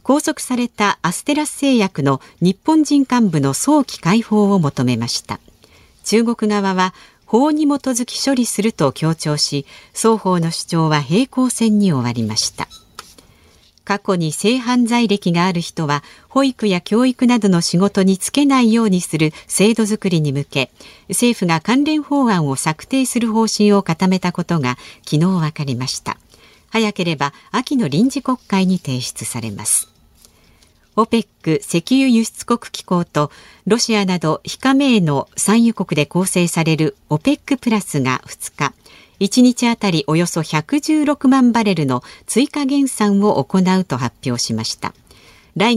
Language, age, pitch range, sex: Japanese, 50-69, 150-235 Hz, female